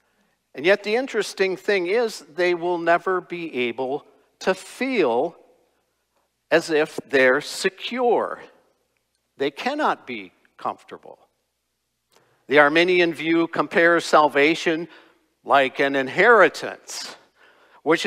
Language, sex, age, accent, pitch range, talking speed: English, male, 50-69, American, 135-205 Hz, 100 wpm